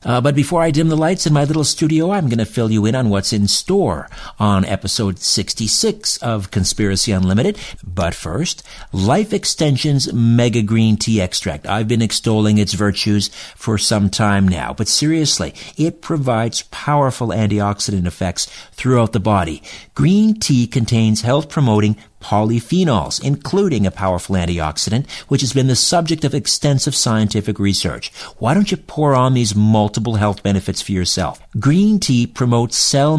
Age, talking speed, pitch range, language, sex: 50-69, 155 wpm, 105-140 Hz, English, male